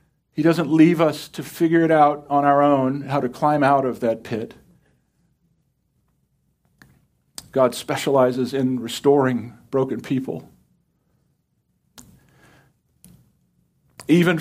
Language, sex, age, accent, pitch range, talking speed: English, male, 50-69, American, 135-175 Hz, 105 wpm